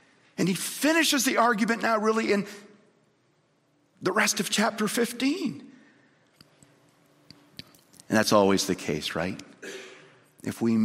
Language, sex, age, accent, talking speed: English, male, 50-69, American, 115 wpm